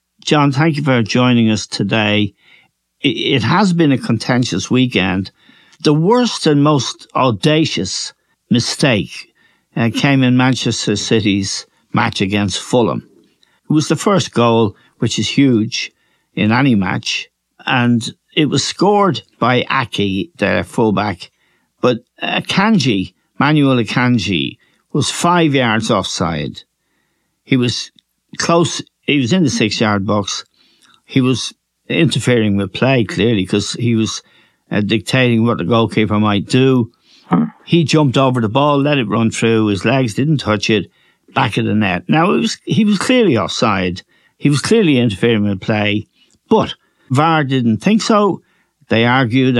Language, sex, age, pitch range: English, male, 60-79, 110-150 Hz